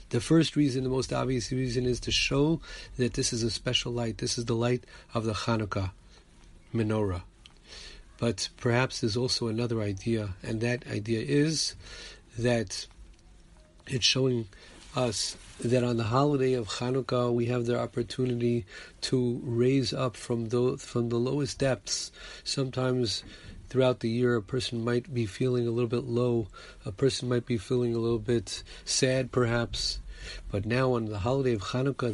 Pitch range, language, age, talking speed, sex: 115-135 Hz, English, 40-59, 160 wpm, male